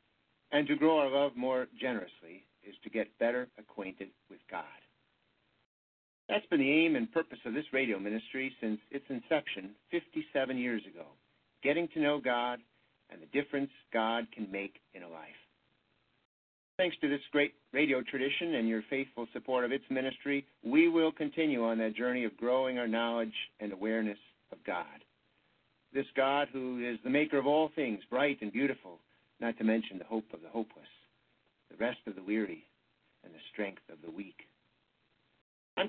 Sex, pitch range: male, 110-145 Hz